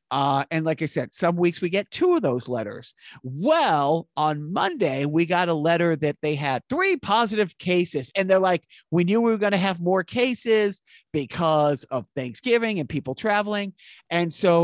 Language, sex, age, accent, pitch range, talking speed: English, male, 50-69, American, 155-210 Hz, 190 wpm